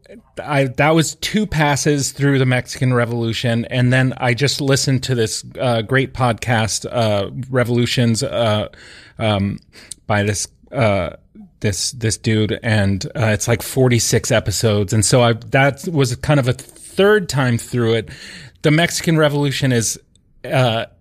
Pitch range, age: 110-140 Hz, 30-49